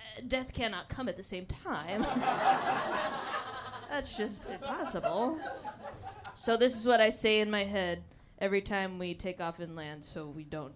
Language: English